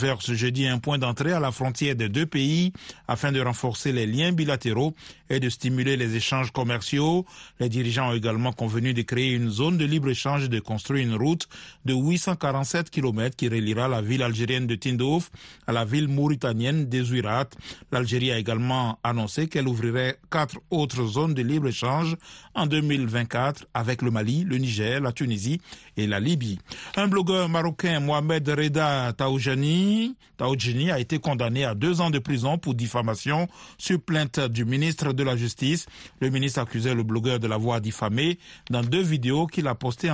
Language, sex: French, male